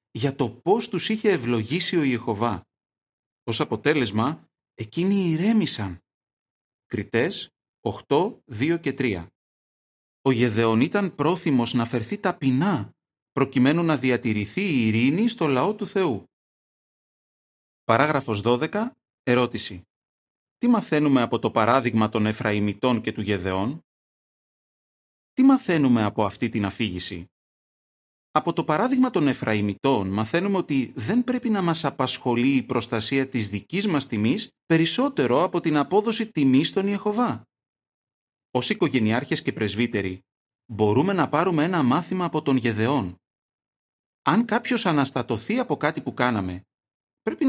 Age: 30-49